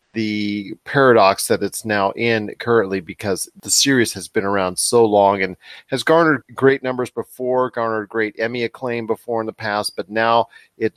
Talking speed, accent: 175 wpm, American